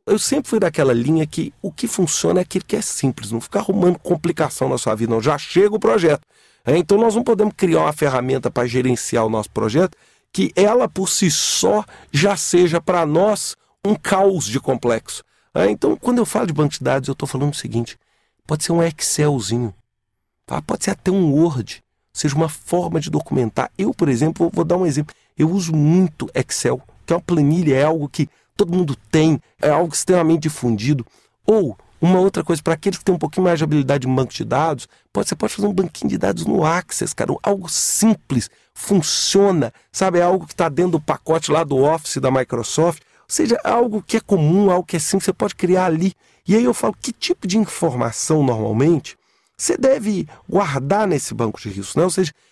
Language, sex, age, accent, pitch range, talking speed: Portuguese, male, 40-59, Brazilian, 140-195 Hz, 205 wpm